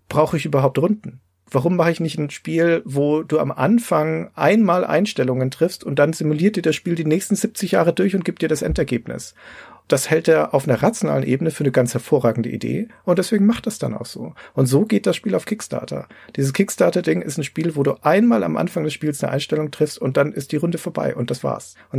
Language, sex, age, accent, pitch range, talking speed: German, male, 40-59, German, 125-165 Hz, 230 wpm